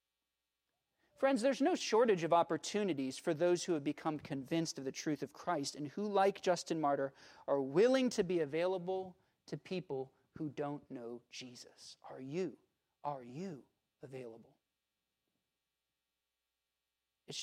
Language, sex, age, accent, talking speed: English, male, 40-59, American, 135 wpm